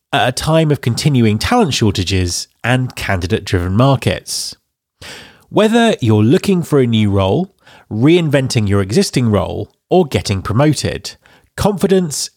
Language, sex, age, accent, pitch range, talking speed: English, male, 30-49, British, 100-170 Hz, 120 wpm